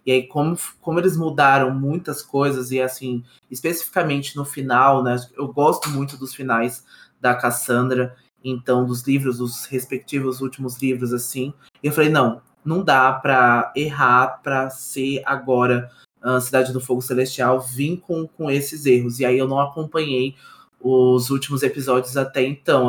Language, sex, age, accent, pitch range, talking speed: Portuguese, male, 20-39, Brazilian, 125-140 Hz, 155 wpm